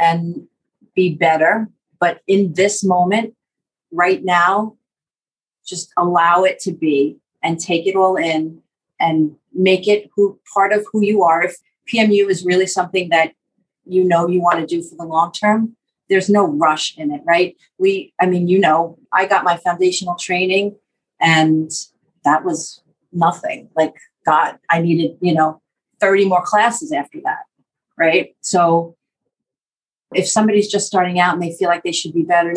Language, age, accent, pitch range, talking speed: English, 40-59, American, 170-205 Hz, 165 wpm